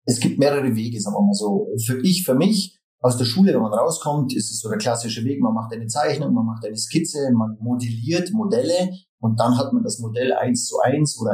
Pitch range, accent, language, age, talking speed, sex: 115-150 Hz, German, German, 40-59, 235 wpm, male